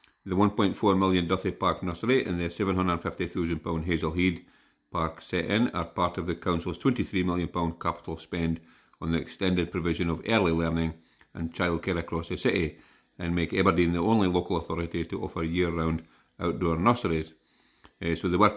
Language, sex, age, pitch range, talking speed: English, male, 50-69, 80-90 Hz, 160 wpm